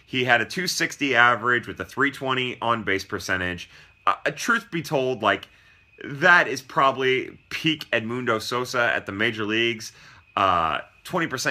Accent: American